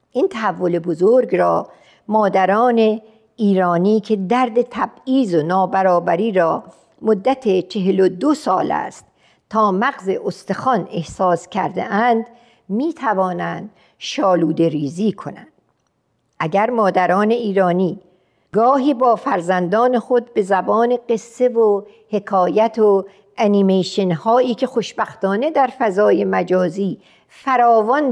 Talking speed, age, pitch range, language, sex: 100 wpm, 50-69, 185-235 Hz, Persian, female